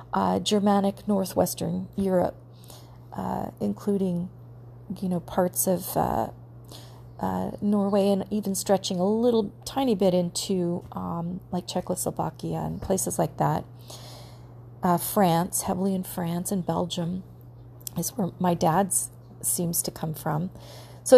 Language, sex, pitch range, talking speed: English, female, 160-210 Hz, 125 wpm